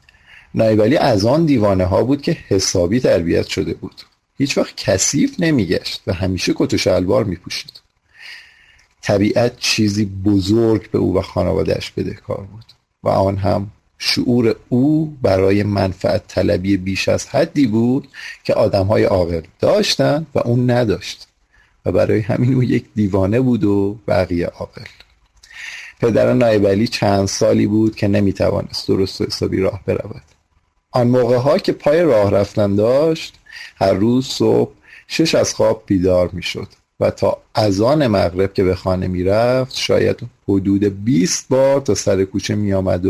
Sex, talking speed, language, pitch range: male, 145 wpm, Persian, 95-120 Hz